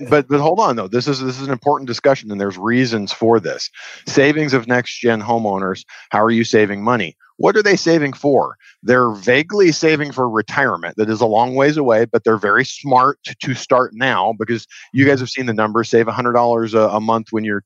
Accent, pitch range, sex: American, 110-135 Hz, male